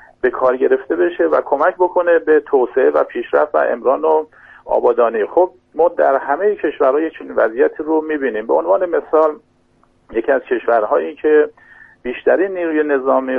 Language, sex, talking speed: Persian, male, 150 wpm